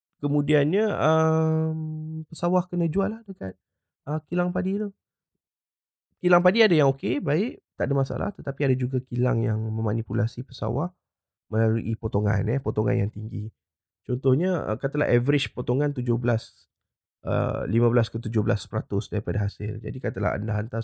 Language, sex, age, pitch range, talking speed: Malay, male, 20-39, 105-145 Hz, 140 wpm